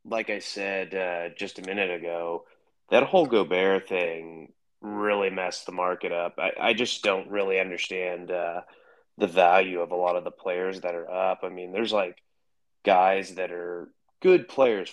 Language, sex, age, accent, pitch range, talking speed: English, male, 30-49, American, 90-115 Hz, 175 wpm